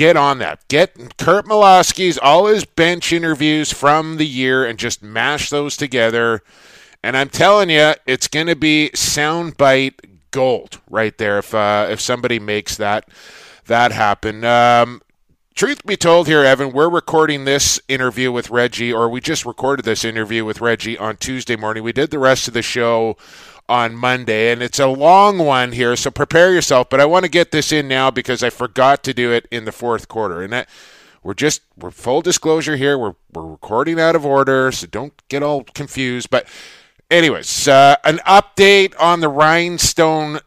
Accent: American